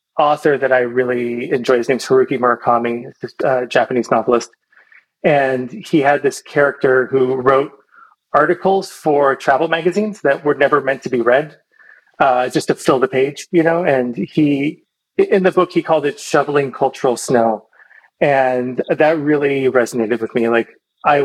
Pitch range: 125-150 Hz